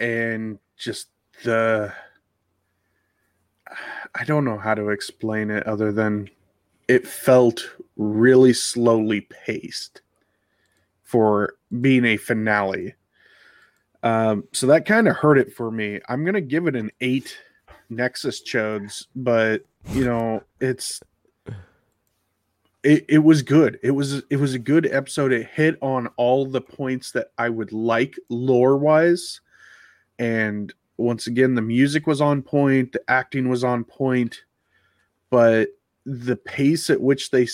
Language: English